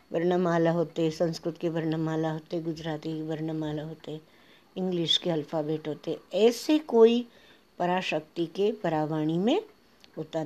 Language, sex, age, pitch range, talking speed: Hindi, female, 60-79, 165-235 Hz, 120 wpm